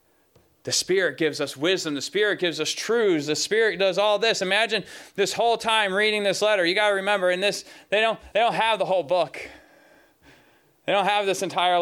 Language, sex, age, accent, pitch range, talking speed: English, male, 20-39, American, 170-235 Hz, 205 wpm